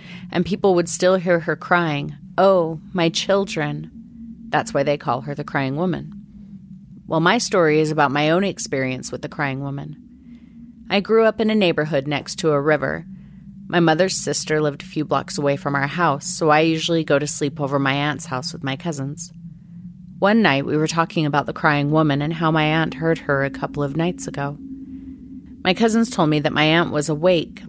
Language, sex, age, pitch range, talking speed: English, female, 30-49, 150-195 Hz, 200 wpm